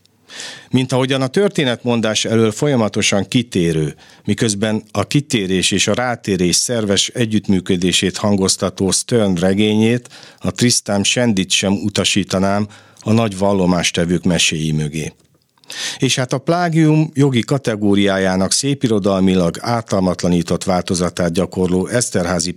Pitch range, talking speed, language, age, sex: 95-120 Hz, 105 wpm, Hungarian, 50-69, male